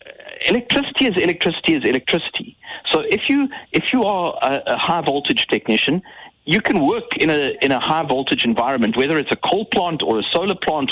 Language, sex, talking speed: English, male, 180 wpm